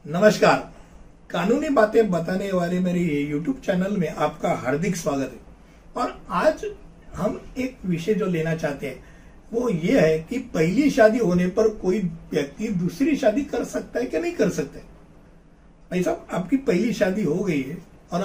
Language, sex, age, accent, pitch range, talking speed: Hindi, male, 60-79, native, 170-230 Hz, 160 wpm